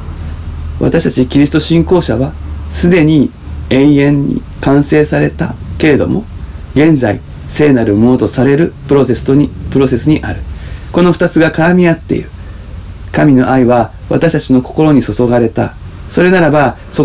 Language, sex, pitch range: Japanese, male, 100-150 Hz